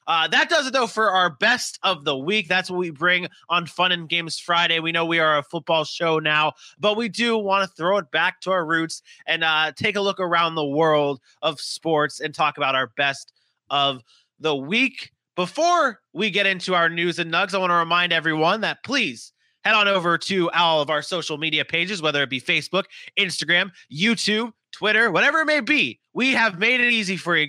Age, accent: 20-39, American